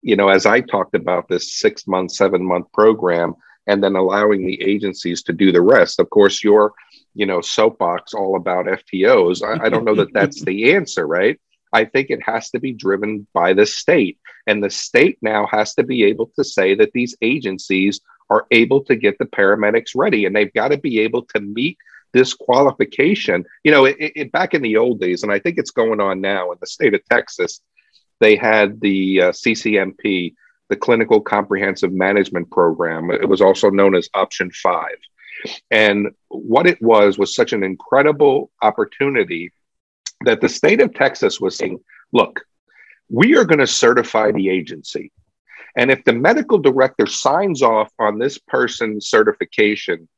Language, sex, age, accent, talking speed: English, male, 50-69, American, 180 wpm